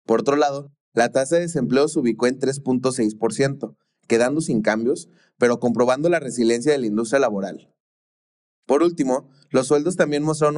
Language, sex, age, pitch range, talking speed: Spanish, male, 20-39, 115-145 Hz, 160 wpm